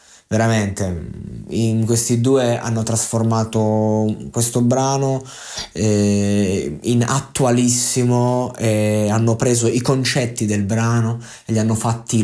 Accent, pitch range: native, 105-115 Hz